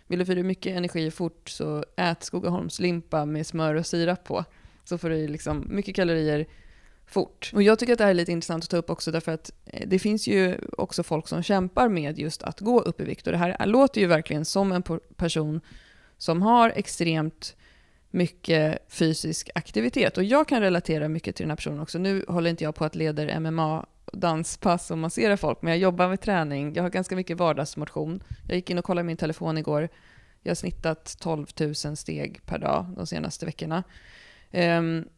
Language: Swedish